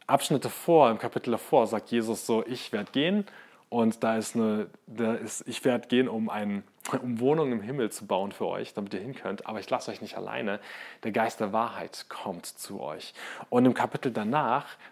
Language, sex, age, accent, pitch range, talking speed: German, male, 30-49, German, 110-130 Hz, 200 wpm